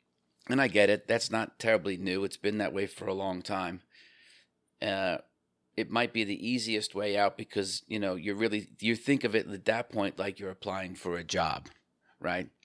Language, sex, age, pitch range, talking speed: English, male, 40-59, 90-105 Hz, 195 wpm